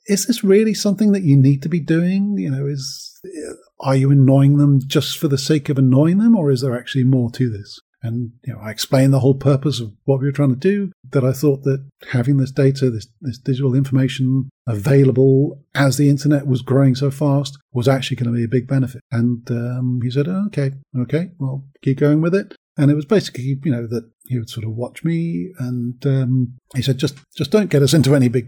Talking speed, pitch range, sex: 230 wpm, 130-155 Hz, male